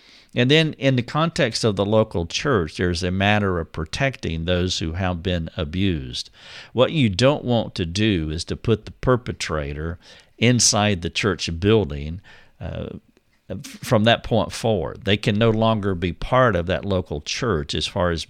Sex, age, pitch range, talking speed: male, 50-69, 90-115 Hz, 170 wpm